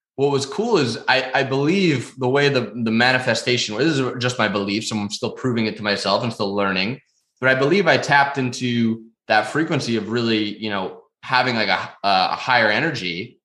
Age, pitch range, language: 20-39, 110-130 Hz, English